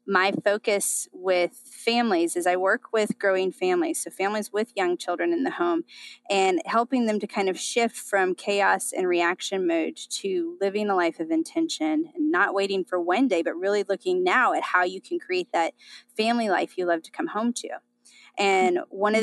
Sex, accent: female, American